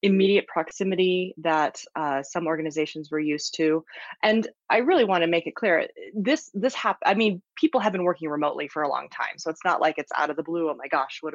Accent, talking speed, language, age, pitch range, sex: American, 235 wpm, English, 20-39, 155-195 Hz, female